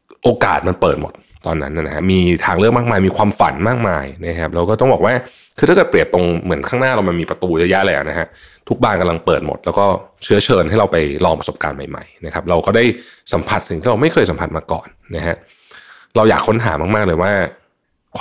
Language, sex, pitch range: Thai, male, 80-105 Hz